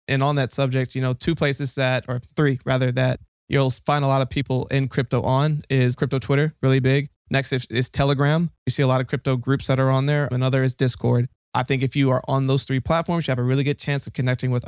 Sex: male